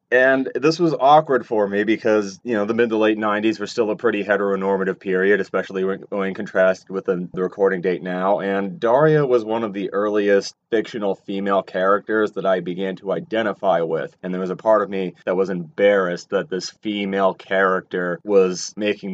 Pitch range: 95-110 Hz